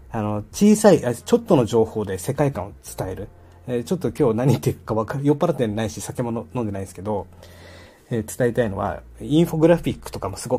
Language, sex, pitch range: Japanese, male, 105-150 Hz